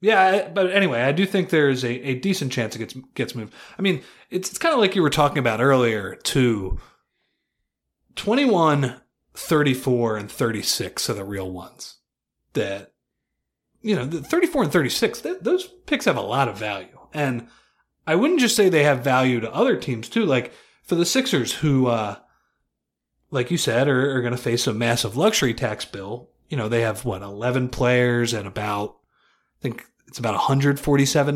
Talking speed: 185 wpm